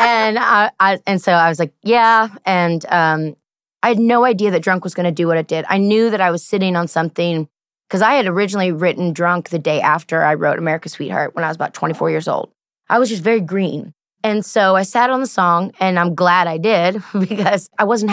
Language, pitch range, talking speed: English, 170-200 Hz, 240 wpm